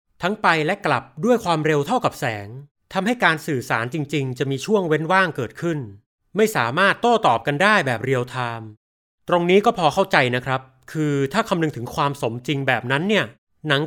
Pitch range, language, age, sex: 130-195 Hz, Thai, 30-49, male